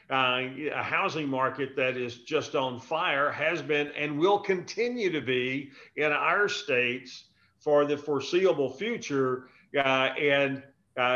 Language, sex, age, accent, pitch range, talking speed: English, male, 50-69, American, 130-155 Hz, 140 wpm